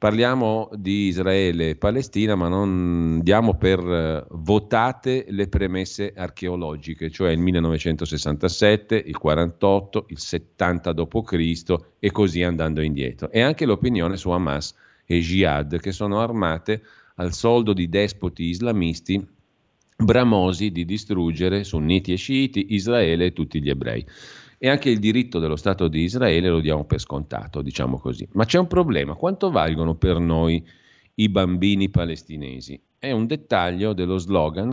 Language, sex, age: Italian, male, 40-59